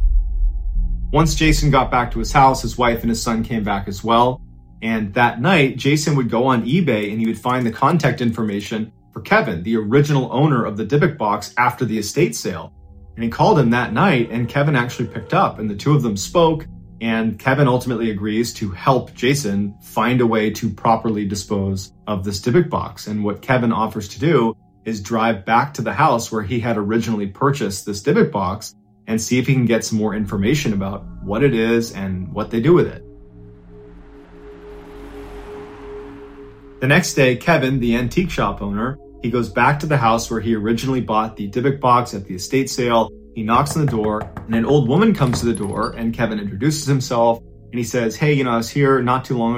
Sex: male